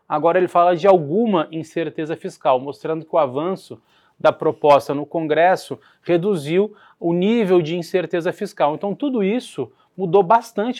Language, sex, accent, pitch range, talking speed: Portuguese, male, Brazilian, 160-195 Hz, 145 wpm